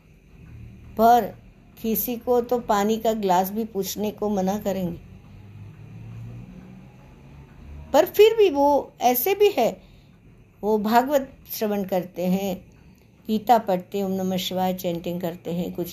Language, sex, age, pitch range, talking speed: Hindi, female, 60-79, 170-220 Hz, 120 wpm